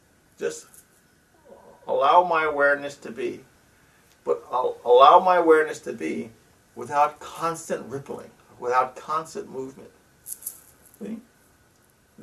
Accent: American